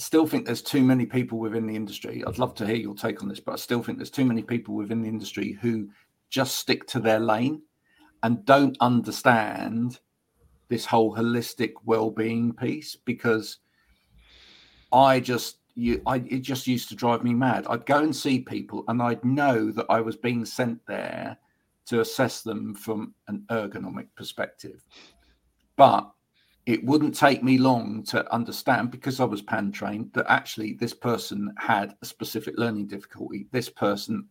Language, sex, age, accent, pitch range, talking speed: English, male, 50-69, British, 110-130 Hz, 175 wpm